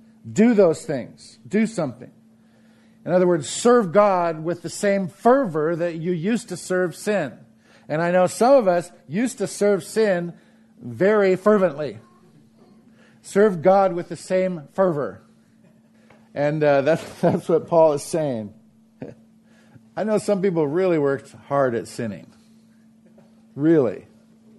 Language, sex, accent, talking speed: English, male, American, 135 wpm